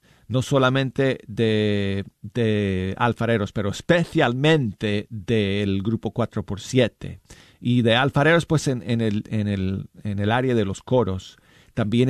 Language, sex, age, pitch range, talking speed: Spanish, male, 40-59, 100-135 Hz, 135 wpm